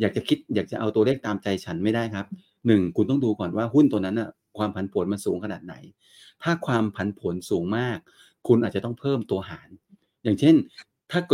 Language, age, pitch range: Thai, 30-49, 100-120 Hz